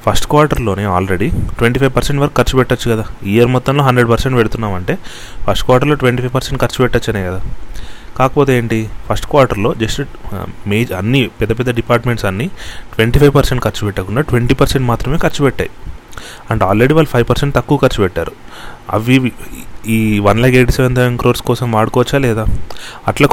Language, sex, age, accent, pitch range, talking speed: Telugu, male, 30-49, native, 105-125 Hz, 150 wpm